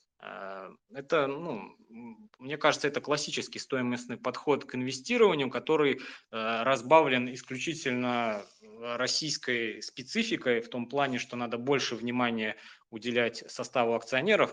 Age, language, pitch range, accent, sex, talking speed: 20-39, Russian, 110-135 Hz, native, male, 105 wpm